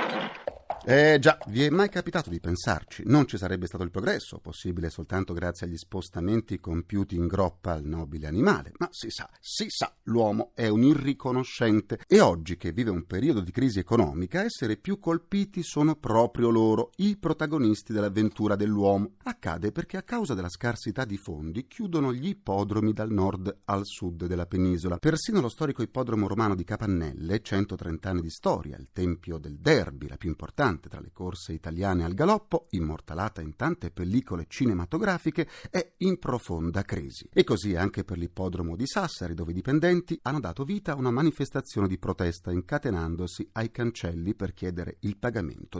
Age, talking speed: 40-59, 170 wpm